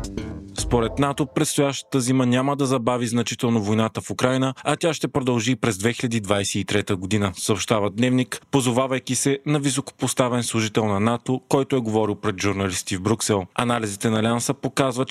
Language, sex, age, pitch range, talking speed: Bulgarian, male, 30-49, 110-135 Hz, 150 wpm